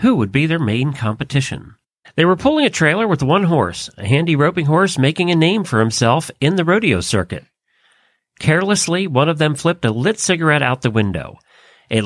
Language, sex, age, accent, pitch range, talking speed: English, male, 40-59, American, 120-160 Hz, 195 wpm